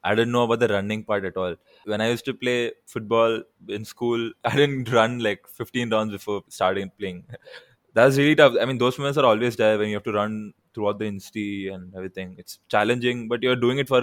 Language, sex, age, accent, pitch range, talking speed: English, male, 20-39, Indian, 105-125 Hz, 225 wpm